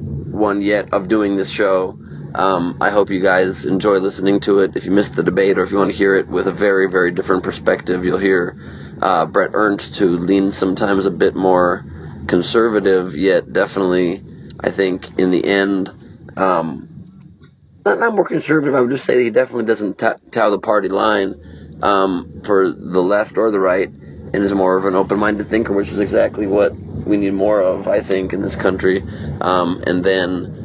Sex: male